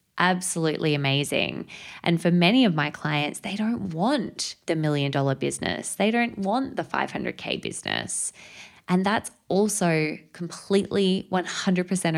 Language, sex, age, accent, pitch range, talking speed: English, female, 20-39, Australian, 150-180 Hz, 130 wpm